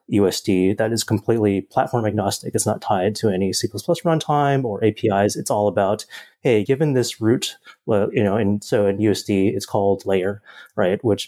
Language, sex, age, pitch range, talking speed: English, male, 30-49, 100-115 Hz, 180 wpm